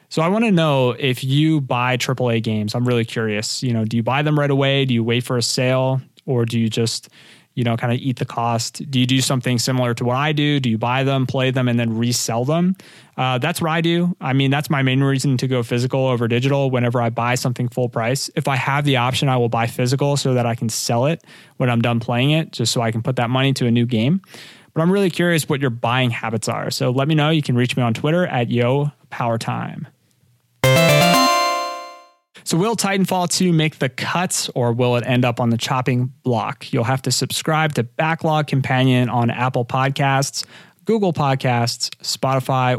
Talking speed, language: 225 wpm, English